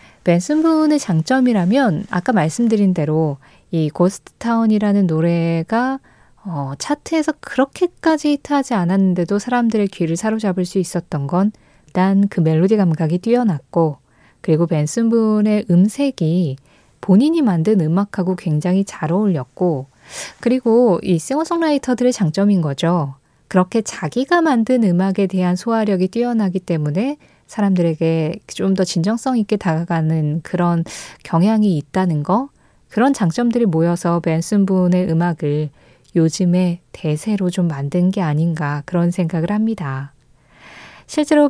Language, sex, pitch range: Korean, female, 165-230 Hz